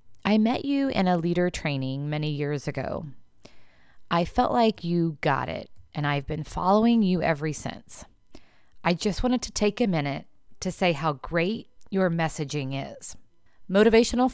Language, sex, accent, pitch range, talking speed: English, female, American, 145-215 Hz, 160 wpm